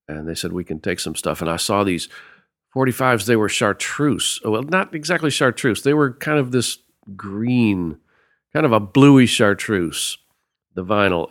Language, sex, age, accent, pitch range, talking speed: English, male, 50-69, American, 80-110 Hz, 175 wpm